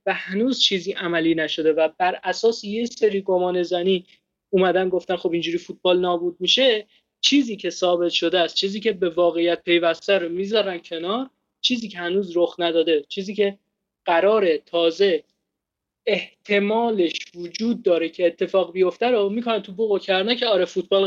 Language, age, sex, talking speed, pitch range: Persian, 20-39, male, 155 wpm, 175-215 Hz